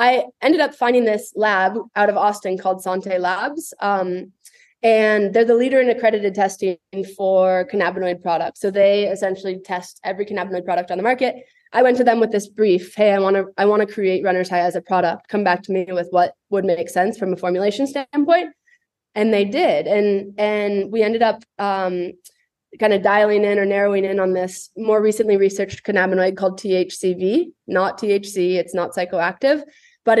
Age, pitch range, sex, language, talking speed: 20-39, 185-230 Hz, female, English, 185 wpm